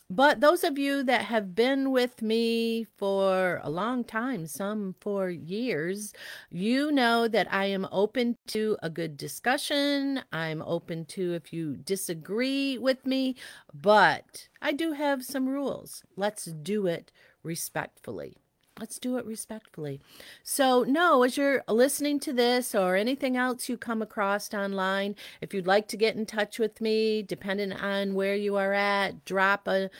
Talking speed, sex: 160 wpm, female